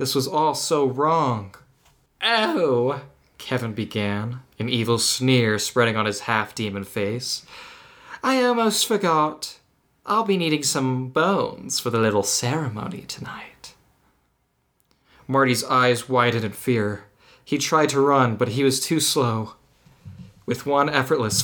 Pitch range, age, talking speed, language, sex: 110-145 Hz, 20-39, 130 wpm, English, male